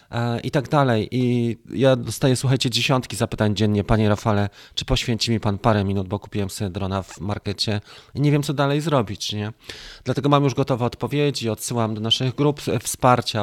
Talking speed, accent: 185 wpm, native